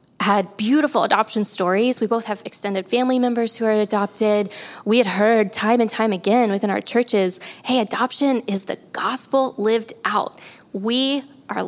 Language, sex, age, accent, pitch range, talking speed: English, female, 20-39, American, 205-240 Hz, 165 wpm